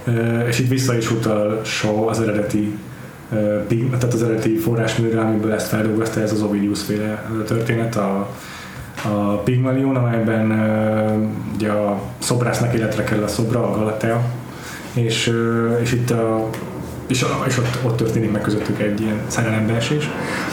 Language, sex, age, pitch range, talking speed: Hungarian, male, 20-39, 110-125 Hz, 145 wpm